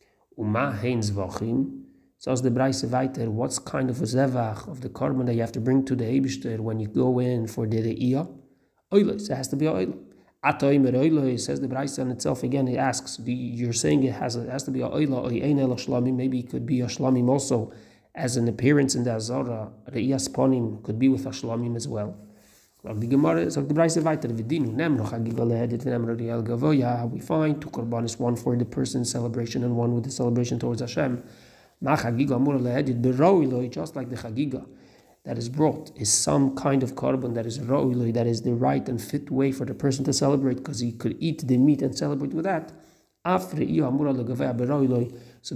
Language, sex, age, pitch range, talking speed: English, male, 30-49, 120-135 Hz, 165 wpm